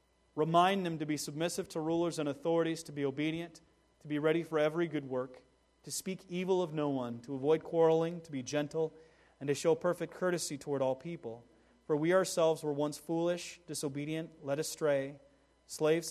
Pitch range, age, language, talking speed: 145-185 Hz, 30-49, English, 185 wpm